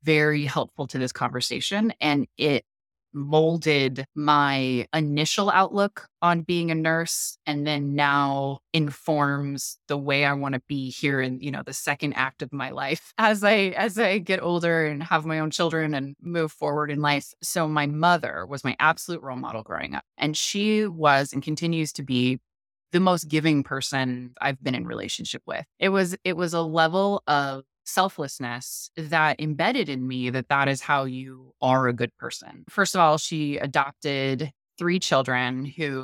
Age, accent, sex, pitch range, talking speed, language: 20-39, American, female, 135-160 Hz, 175 wpm, English